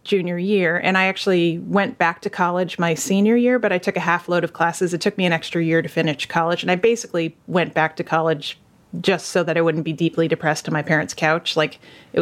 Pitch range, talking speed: 170-195 Hz, 245 wpm